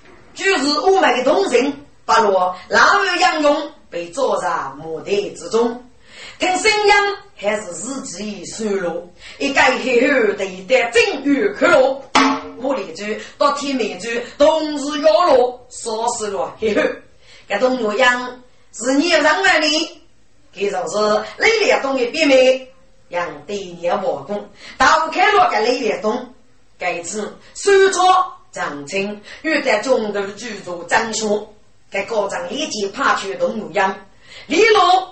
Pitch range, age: 210-315 Hz, 30-49